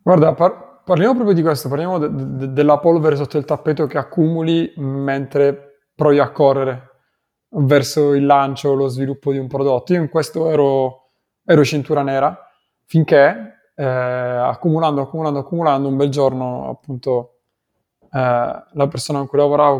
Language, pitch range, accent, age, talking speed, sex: Italian, 135-160 Hz, native, 20-39, 155 wpm, male